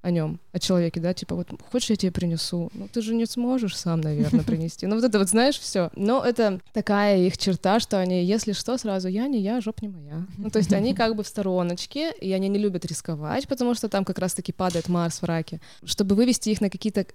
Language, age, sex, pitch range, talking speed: Russian, 20-39, female, 170-215 Hz, 240 wpm